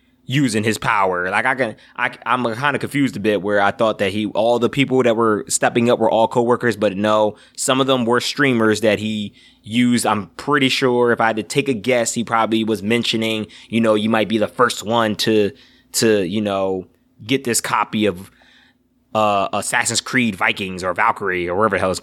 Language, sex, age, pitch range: English, male, 20-39, 105-145 Hz